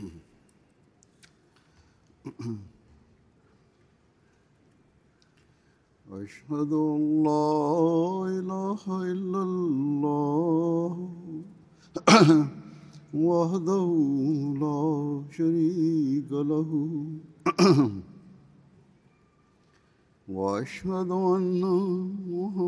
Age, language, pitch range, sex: 60-79, Bulgarian, 140-175 Hz, male